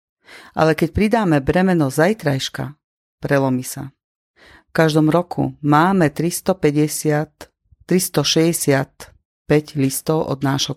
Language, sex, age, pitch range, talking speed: Slovak, female, 40-59, 135-170 Hz, 85 wpm